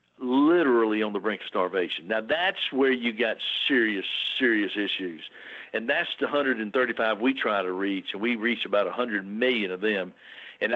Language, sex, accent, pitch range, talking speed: English, male, American, 105-145 Hz, 175 wpm